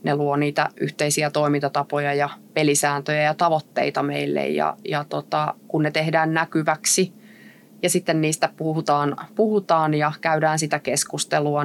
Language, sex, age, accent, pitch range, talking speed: Finnish, female, 20-39, native, 150-175 Hz, 130 wpm